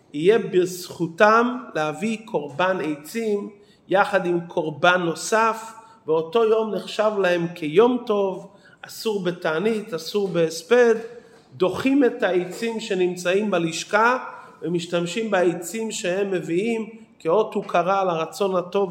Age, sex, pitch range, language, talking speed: 40-59, male, 165-215 Hz, English, 105 wpm